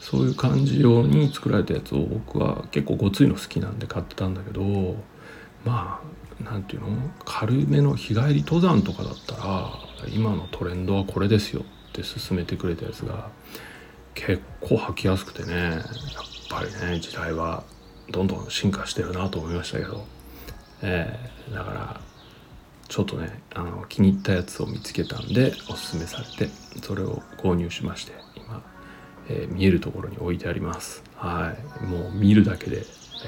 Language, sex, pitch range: Japanese, male, 90-115 Hz